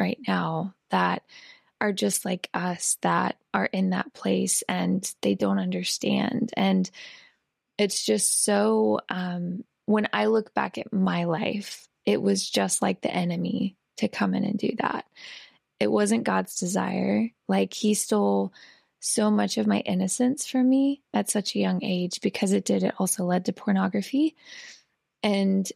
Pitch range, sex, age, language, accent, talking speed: 180-220 Hz, female, 20-39, English, American, 160 wpm